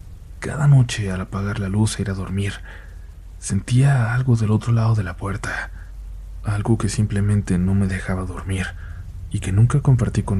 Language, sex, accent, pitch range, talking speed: Spanish, male, Mexican, 90-110 Hz, 175 wpm